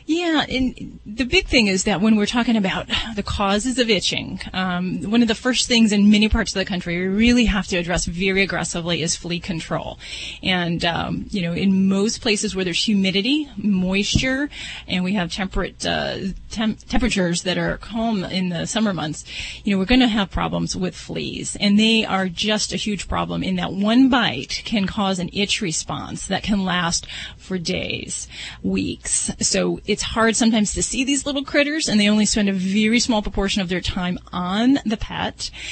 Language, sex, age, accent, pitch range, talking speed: English, female, 30-49, American, 180-220 Hz, 195 wpm